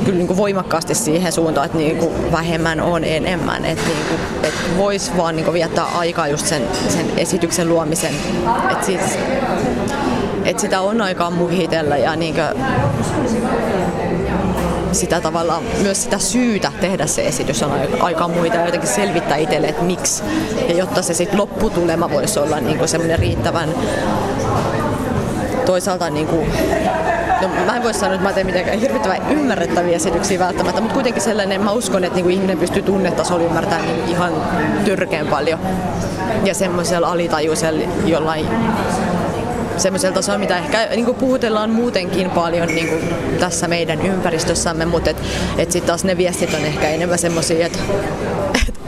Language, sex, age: Finnish, female, 30-49